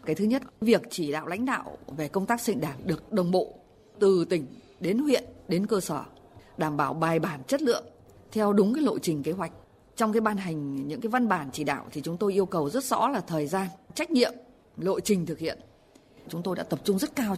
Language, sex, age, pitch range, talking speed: Vietnamese, female, 20-39, 155-220 Hz, 240 wpm